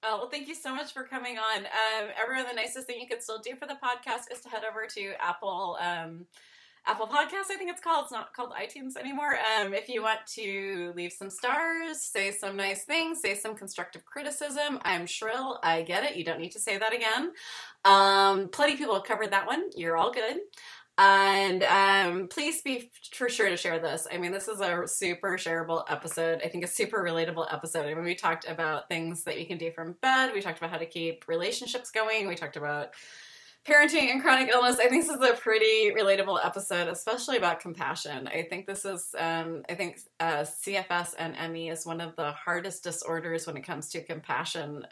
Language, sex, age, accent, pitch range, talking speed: English, female, 20-39, American, 165-245 Hz, 215 wpm